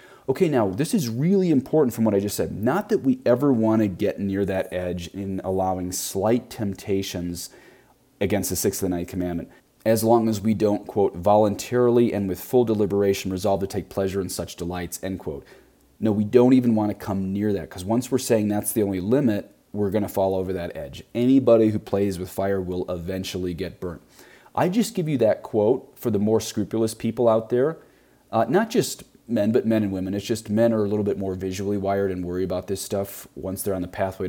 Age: 30-49